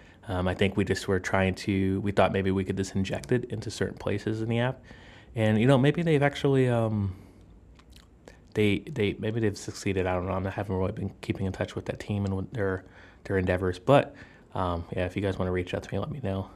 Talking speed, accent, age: 245 wpm, American, 20-39